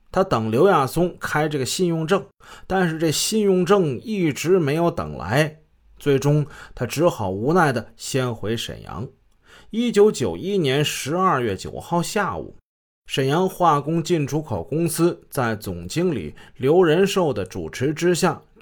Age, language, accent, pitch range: 30-49, Chinese, native, 120-175 Hz